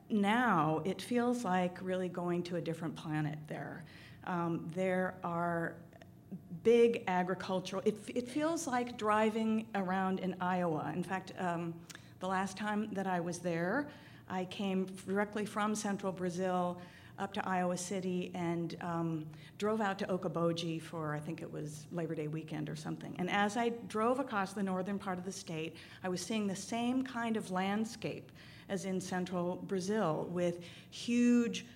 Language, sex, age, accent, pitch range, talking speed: English, female, 50-69, American, 170-195 Hz, 160 wpm